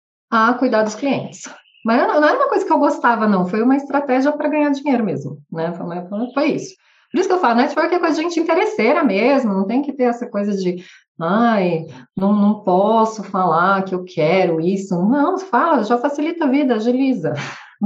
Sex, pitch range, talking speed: female, 195-275 Hz, 195 wpm